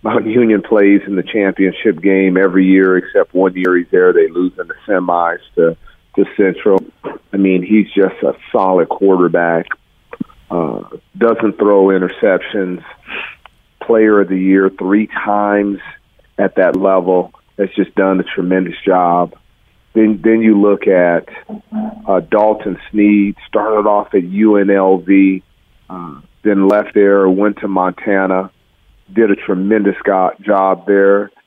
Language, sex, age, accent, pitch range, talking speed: English, male, 40-59, American, 95-110 Hz, 135 wpm